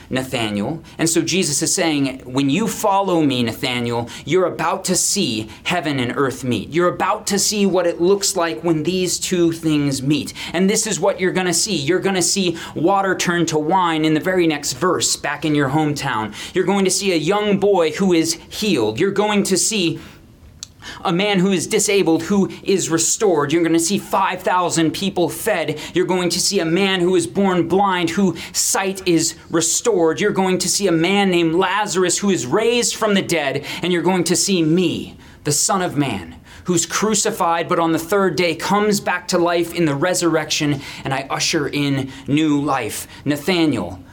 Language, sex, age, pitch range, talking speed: English, male, 30-49, 145-185 Hz, 195 wpm